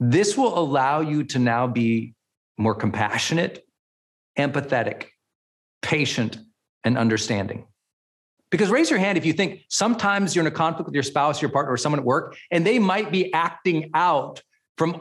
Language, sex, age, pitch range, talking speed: English, male, 40-59, 125-205 Hz, 165 wpm